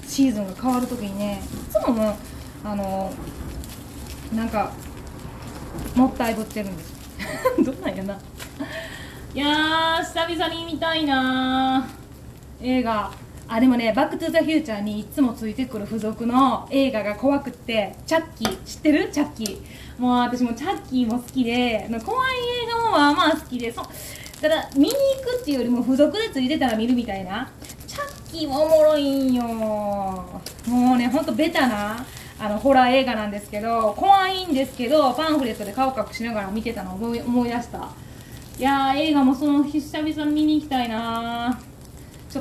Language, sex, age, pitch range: Japanese, female, 20-39, 225-300 Hz